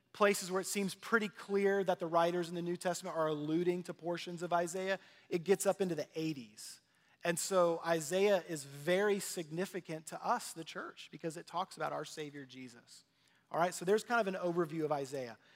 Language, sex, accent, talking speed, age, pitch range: English, male, American, 200 wpm, 30-49, 160-205 Hz